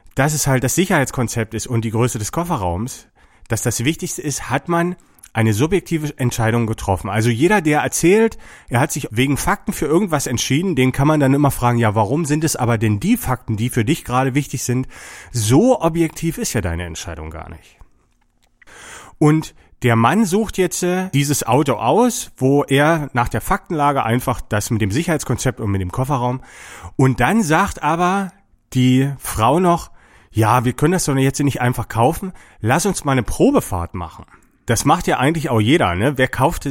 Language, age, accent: German, 30-49, German